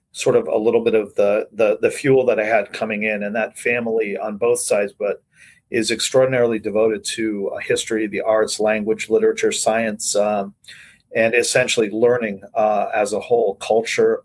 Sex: male